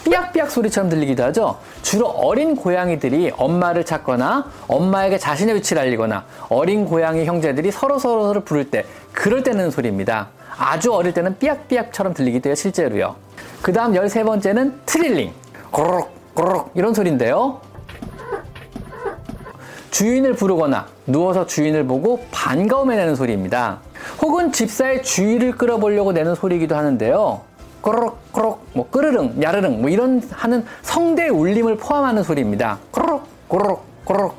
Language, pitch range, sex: Korean, 160-245 Hz, male